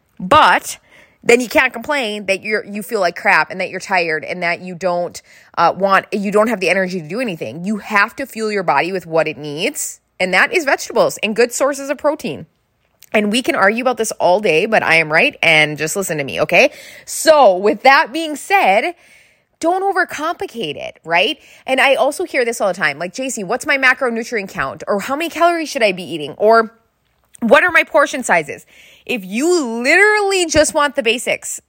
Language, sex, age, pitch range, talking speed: English, female, 20-39, 170-255 Hz, 210 wpm